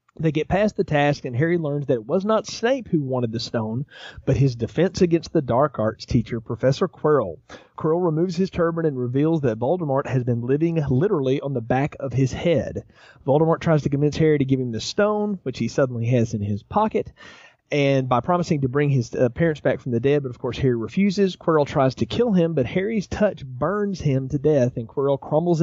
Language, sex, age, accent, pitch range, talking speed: English, male, 30-49, American, 125-160 Hz, 220 wpm